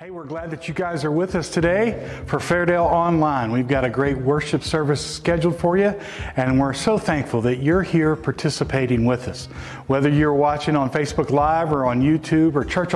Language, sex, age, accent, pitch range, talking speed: English, male, 50-69, American, 135-160 Hz, 200 wpm